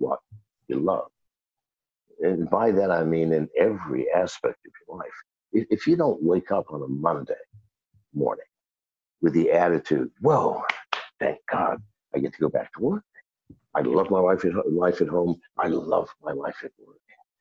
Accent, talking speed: American, 170 wpm